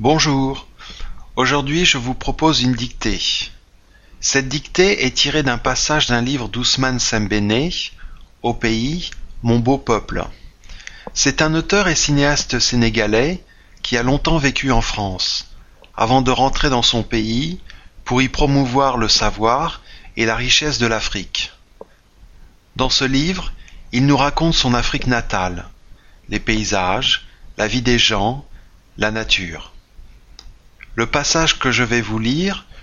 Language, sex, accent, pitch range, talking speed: French, male, French, 110-140 Hz, 140 wpm